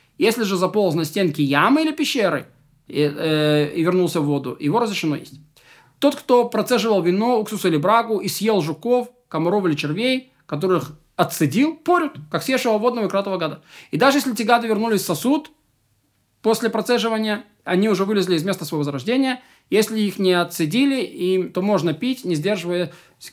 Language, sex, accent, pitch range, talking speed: Russian, male, native, 160-220 Hz, 165 wpm